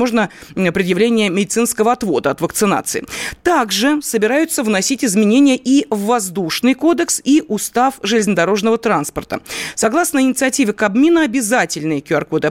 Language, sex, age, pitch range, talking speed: Russian, female, 30-49, 205-270 Hz, 110 wpm